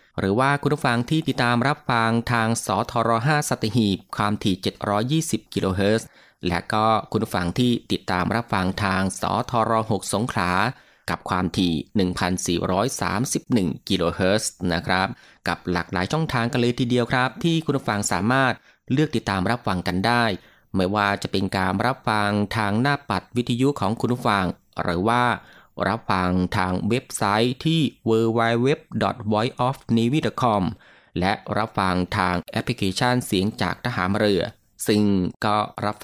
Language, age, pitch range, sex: Thai, 20-39, 95-120 Hz, male